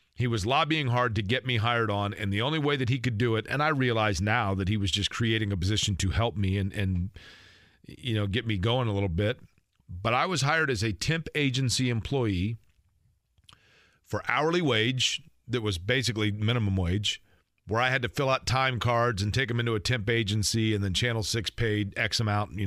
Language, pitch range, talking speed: English, 100-130 Hz, 215 wpm